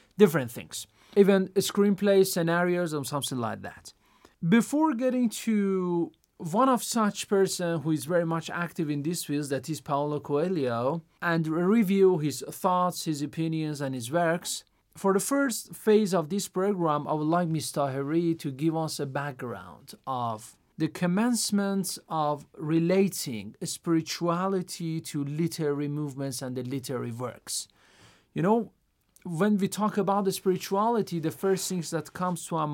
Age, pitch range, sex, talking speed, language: 40-59, 145-195 Hz, male, 150 wpm, Persian